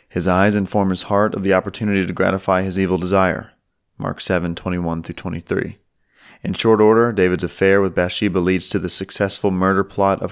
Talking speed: 175 wpm